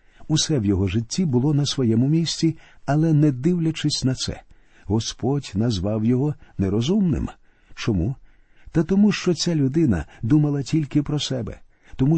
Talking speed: 140 wpm